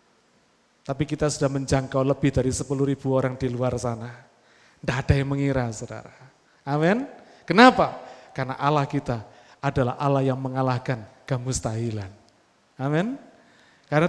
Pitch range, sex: 130-170 Hz, male